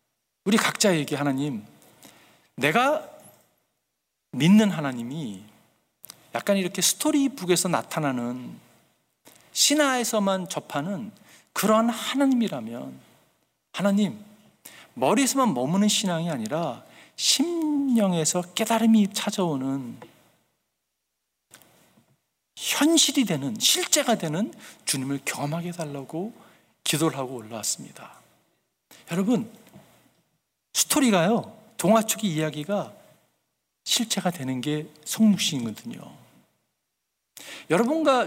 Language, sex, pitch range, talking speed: English, male, 155-225 Hz, 65 wpm